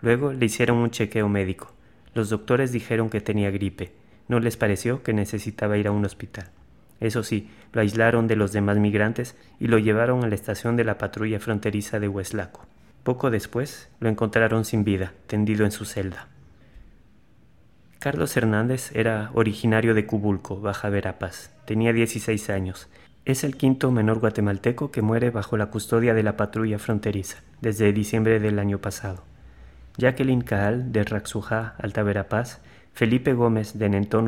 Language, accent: Spanish, Mexican